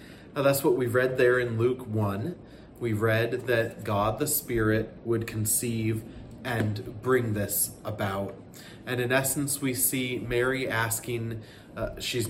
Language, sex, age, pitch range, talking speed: English, male, 30-49, 110-125 Hz, 140 wpm